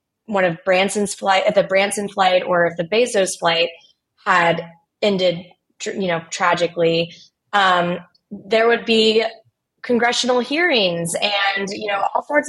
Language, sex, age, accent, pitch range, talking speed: English, female, 20-39, American, 170-210 Hz, 140 wpm